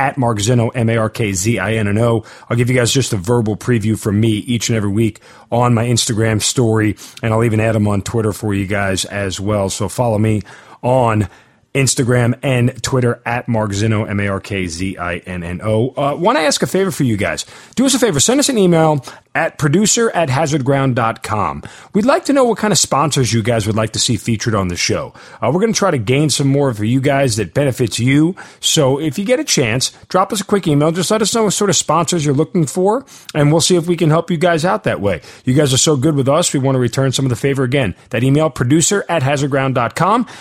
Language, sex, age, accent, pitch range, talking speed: English, male, 30-49, American, 115-155 Hz, 255 wpm